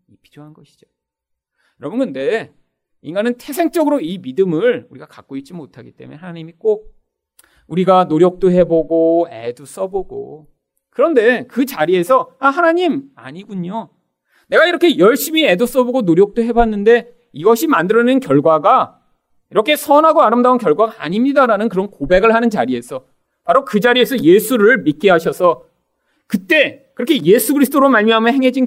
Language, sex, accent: Korean, male, native